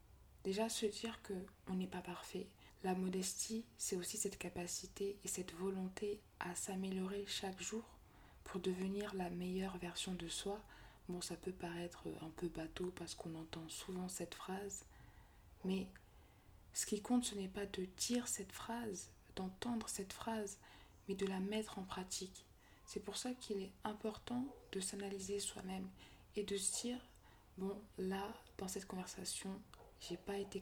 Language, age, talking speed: French, 20-39, 160 wpm